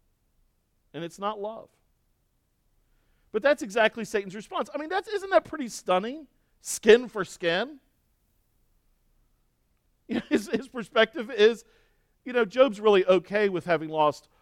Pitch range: 140-200 Hz